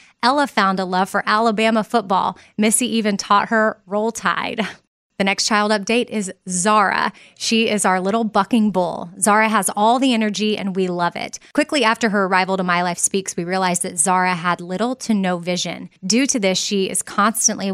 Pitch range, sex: 185-225 Hz, female